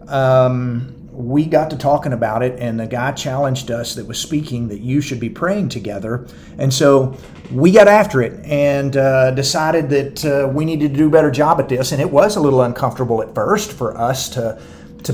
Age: 40-59